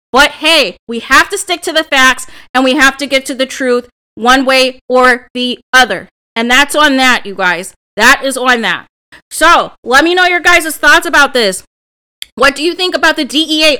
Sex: female